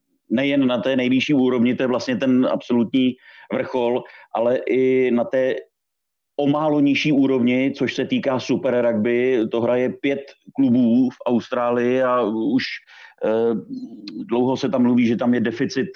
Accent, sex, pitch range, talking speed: native, male, 120-135 Hz, 150 wpm